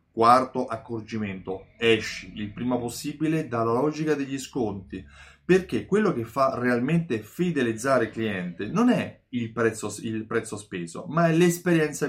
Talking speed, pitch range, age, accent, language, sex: 135 wpm, 110-150 Hz, 30-49, native, Italian, male